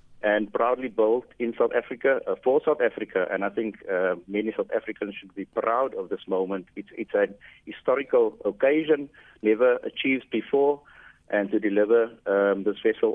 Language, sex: English, male